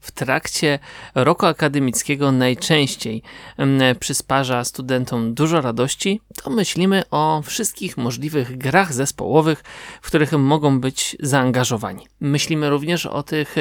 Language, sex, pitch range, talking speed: Polish, male, 130-165 Hz, 110 wpm